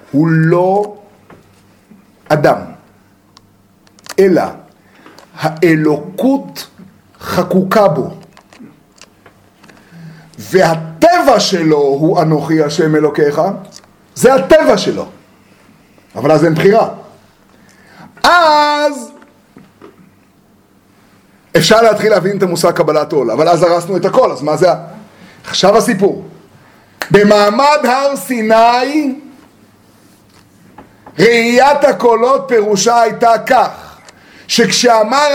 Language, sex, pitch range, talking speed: Hebrew, male, 160-265 Hz, 80 wpm